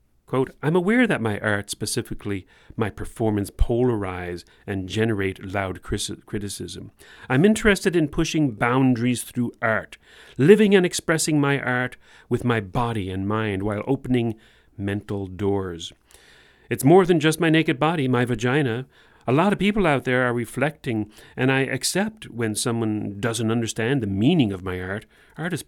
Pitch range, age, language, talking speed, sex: 105-135 Hz, 40-59, English, 155 wpm, male